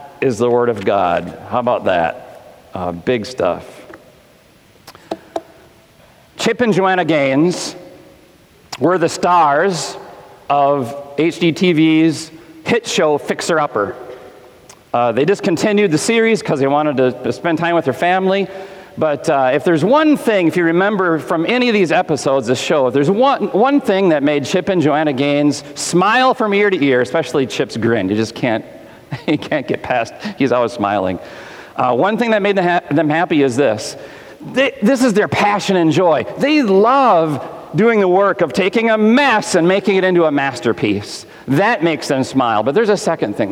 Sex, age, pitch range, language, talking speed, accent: male, 40-59, 145-210 Hz, English, 170 wpm, American